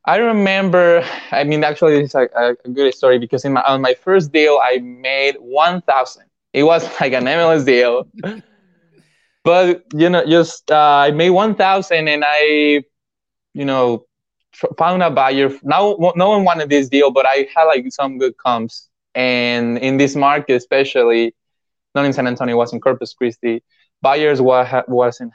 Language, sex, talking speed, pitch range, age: English, male, 175 wpm, 125-160 Hz, 20-39